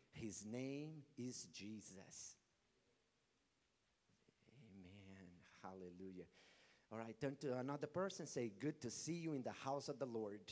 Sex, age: male, 50-69